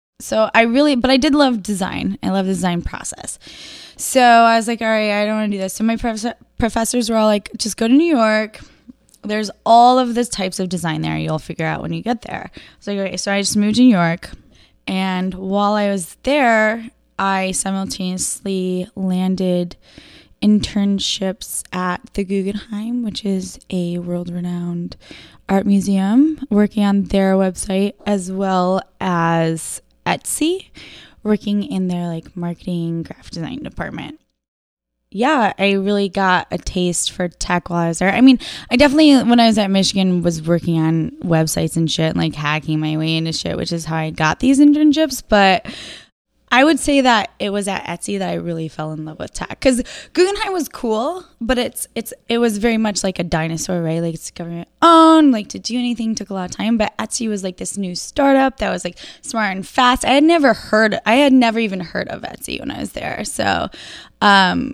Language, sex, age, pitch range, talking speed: English, female, 10-29, 180-230 Hz, 190 wpm